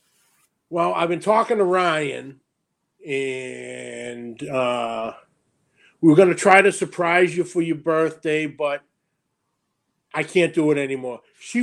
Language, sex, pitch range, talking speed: English, male, 145-175 Hz, 135 wpm